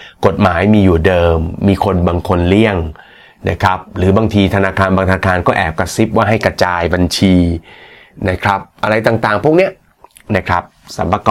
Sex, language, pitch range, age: male, Thai, 95-110 Hz, 30-49